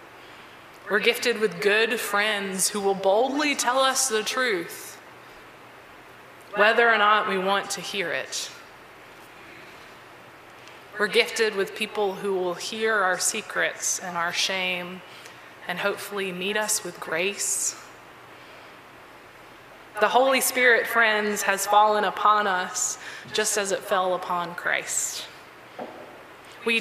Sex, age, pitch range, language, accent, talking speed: female, 20-39, 195-245 Hz, English, American, 120 wpm